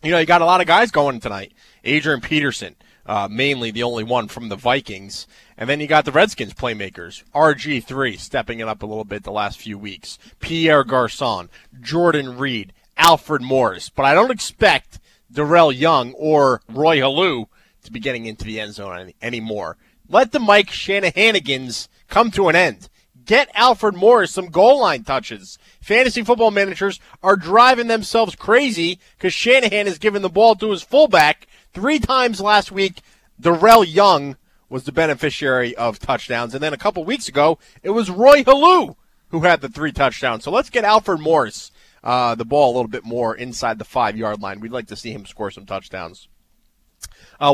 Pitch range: 120-195 Hz